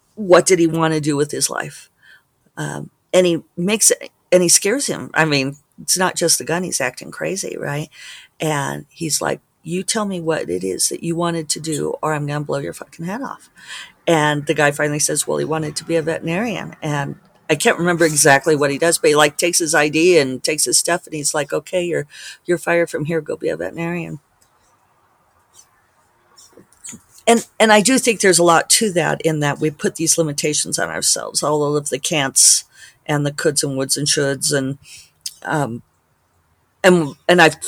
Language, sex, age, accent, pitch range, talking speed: English, female, 50-69, American, 140-170 Hz, 205 wpm